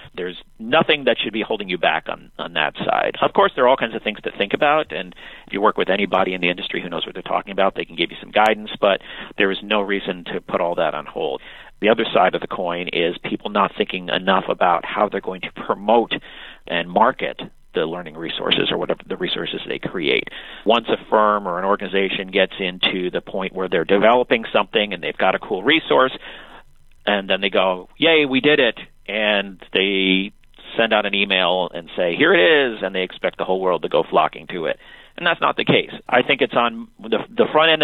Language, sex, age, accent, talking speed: English, male, 50-69, American, 230 wpm